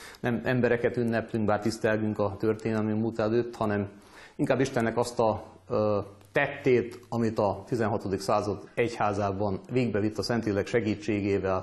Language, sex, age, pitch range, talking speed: Hungarian, male, 30-49, 105-120 Hz, 125 wpm